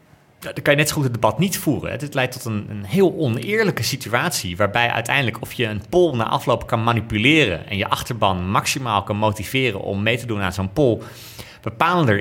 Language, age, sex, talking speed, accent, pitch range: Dutch, 30-49, male, 200 wpm, Dutch, 105-135 Hz